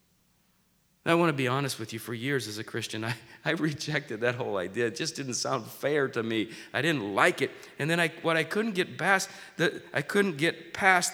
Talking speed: 215 wpm